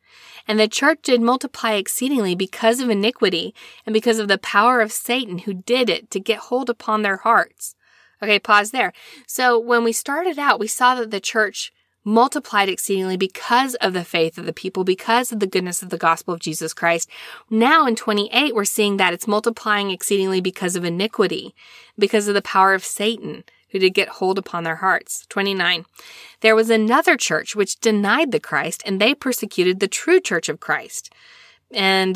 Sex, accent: female, American